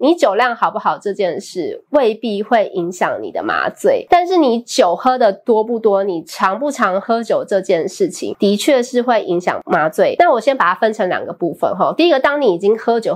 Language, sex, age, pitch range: Chinese, female, 30-49, 185-275 Hz